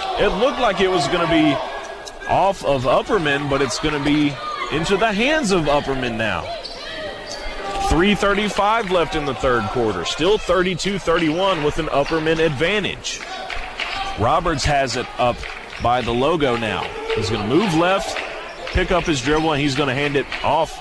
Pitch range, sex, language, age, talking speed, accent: 155-230 Hz, male, English, 30-49, 165 wpm, American